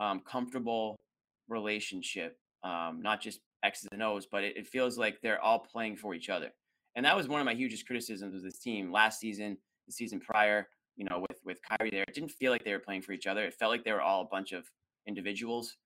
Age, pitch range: 20-39, 95-125 Hz